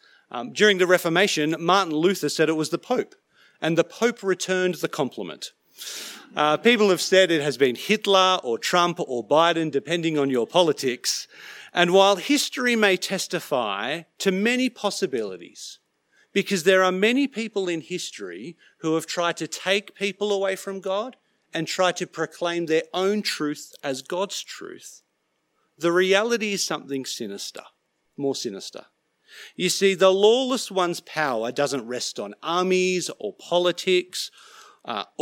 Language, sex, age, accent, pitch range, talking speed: English, male, 40-59, Australian, 150-195 Hz, 150 wpm